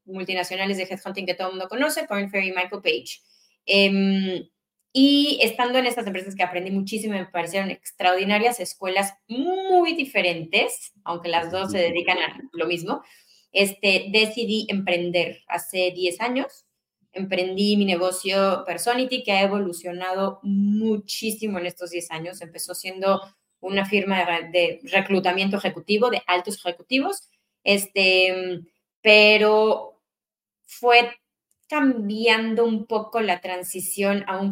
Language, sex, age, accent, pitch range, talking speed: Spanish, female, 20-39, Mexican, 180-220 Hz, 125 wpm